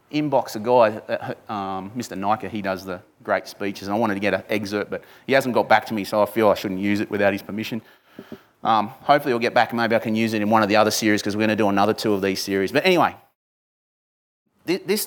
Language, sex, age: English, male, 30-49